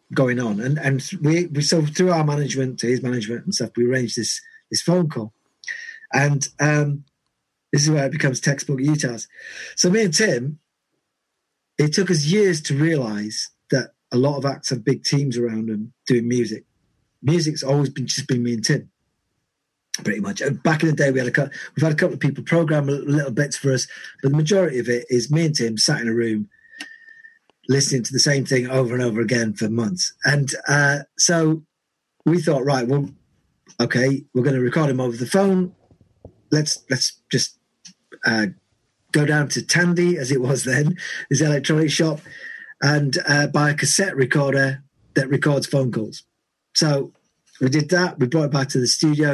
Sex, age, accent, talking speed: male, 40-59, British, 195 wpm